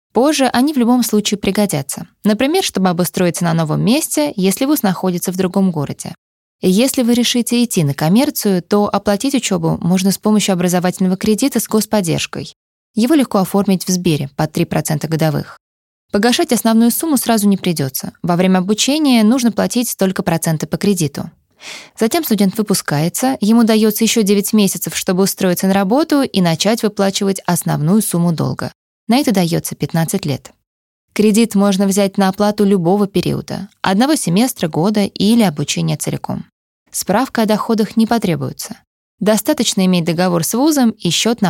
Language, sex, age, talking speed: Russian, female, 20-39, 155 wpm